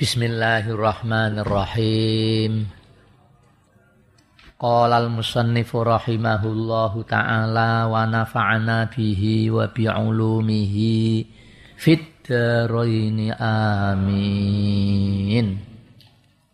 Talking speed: 45 wpm